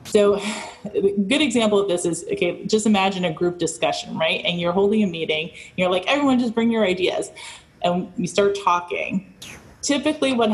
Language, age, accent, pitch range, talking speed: English, 20-39, American, 170-210 Hz, 180 wpm